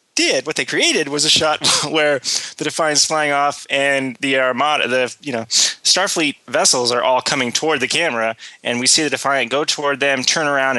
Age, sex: 20-39, male